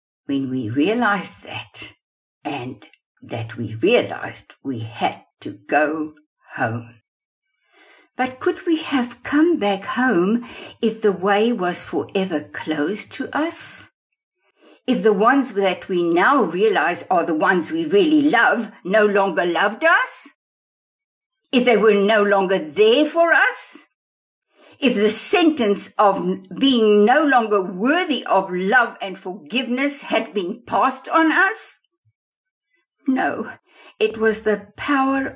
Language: English